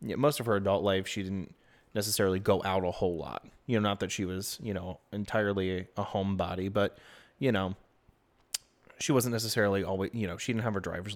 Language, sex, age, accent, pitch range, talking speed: English, male, 30-49, American, 95-110 Hz, 205 wpm